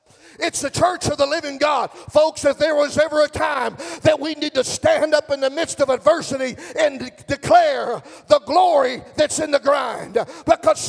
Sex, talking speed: male, 195 wpm